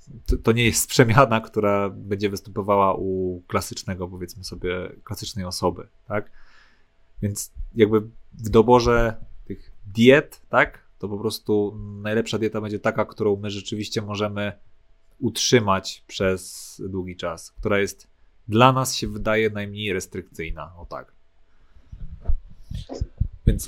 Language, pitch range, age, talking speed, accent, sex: Polish, 95-110 Hz, 30-49, 120 wpm, native, male